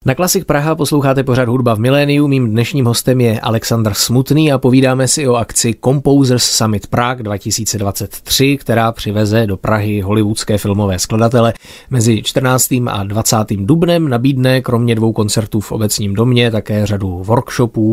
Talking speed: 150 wpm